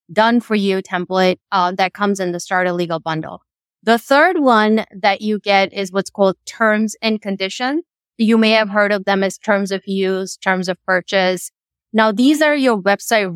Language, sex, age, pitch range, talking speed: English, female, 20-39, 190-220 Hz, 190 wpm